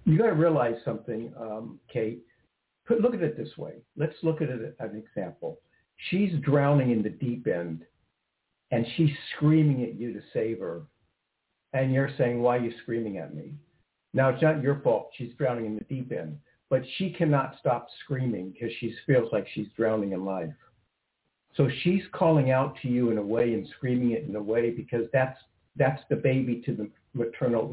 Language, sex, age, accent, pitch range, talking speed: English, male, 60-79, American, 115-145 Hz, 190 wpm